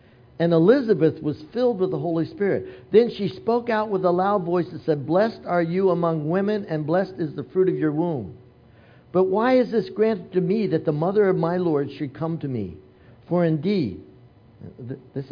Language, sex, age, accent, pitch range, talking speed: English, male, 60-79, American, 120-180 Hz, 200 wpm